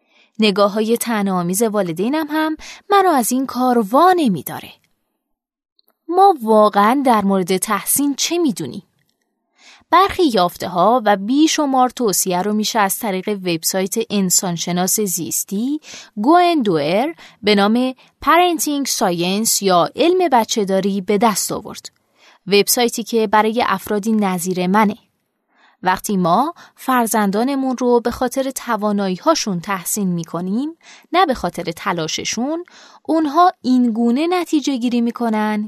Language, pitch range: Persian, 195-265 Hz